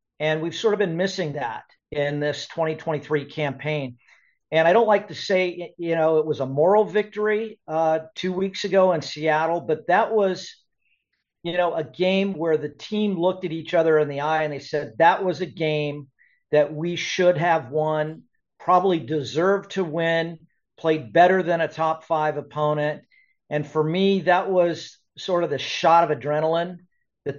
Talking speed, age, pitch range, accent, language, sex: 180 wpm, 50-69, 150-175 Hz, American, English, male